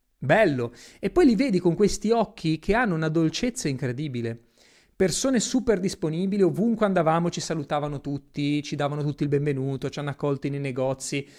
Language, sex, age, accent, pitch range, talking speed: Italian, male, 30-49, native, 135-180 Hz, 165 wpm